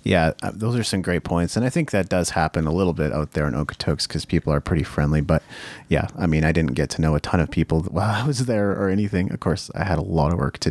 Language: English